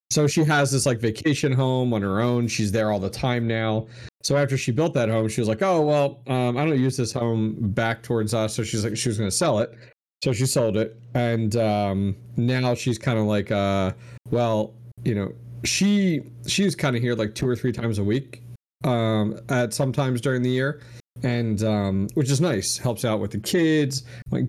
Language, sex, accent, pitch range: English, male, American, 110-130 Hz